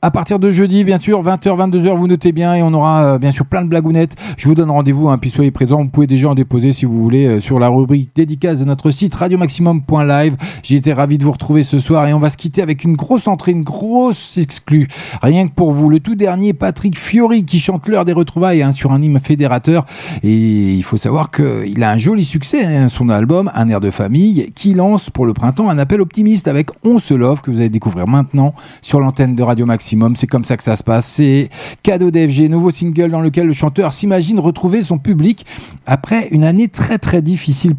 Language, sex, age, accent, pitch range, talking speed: French, male, 40-59, French, 135-180 Hz, 240 wpm